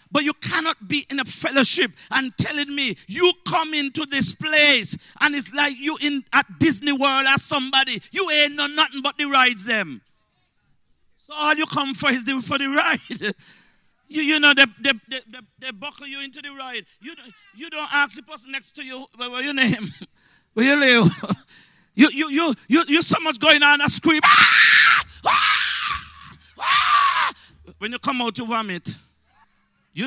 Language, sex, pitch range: English, male, 195-290 Hz